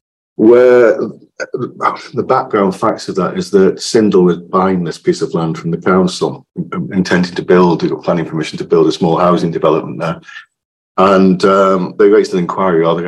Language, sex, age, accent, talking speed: English, male, 40-59, British, 175 wpm